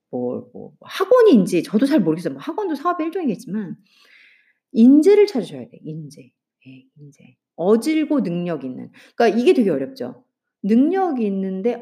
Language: Korean